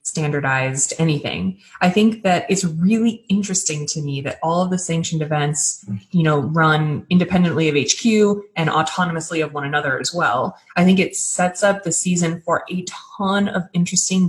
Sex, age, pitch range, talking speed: female, 20-39, 160-210 Hz, 170 wpm